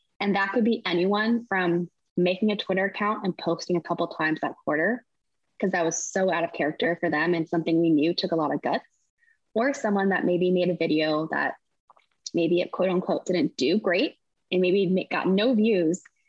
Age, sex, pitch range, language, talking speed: 20-39, female, 175-215 Hz, English, 205 wpm